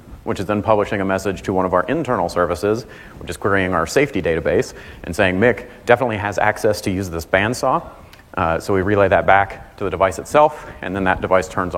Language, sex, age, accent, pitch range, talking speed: English, male, 30-49, American, 95-110 Hz, 220 wpm